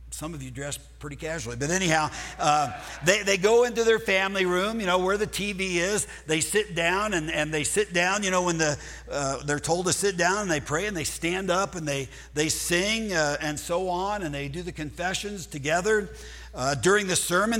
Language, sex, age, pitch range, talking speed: English, male, 60-79, 145-190 Hz, 225 wpm